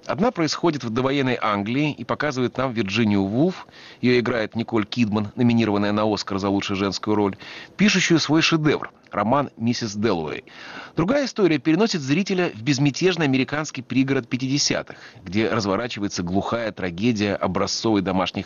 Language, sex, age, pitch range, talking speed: Russian, male, 30-49, 105-150 Hz, 140 wpm